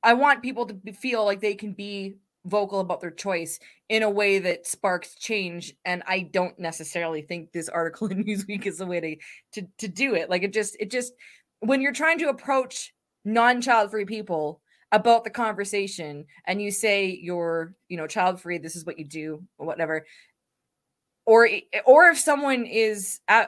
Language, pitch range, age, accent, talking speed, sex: English, 175-220 Hz, 20-39, American, 185 wpm, female